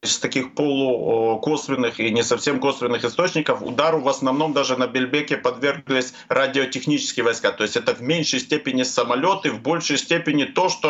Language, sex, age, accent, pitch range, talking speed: Ukrainian, male, 50-69, native, 130-165 Hz, 160 wpm